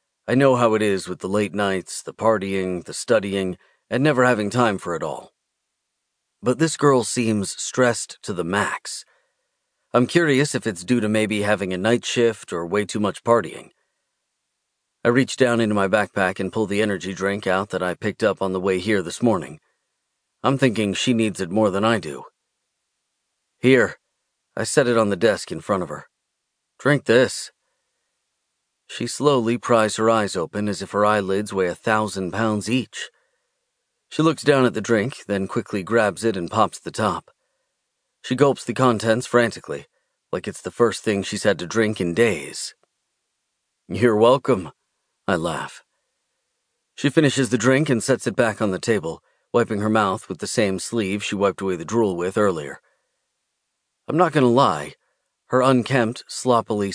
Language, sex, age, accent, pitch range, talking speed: English, male, 40-59, American, 100-125 Hz, 180 wpm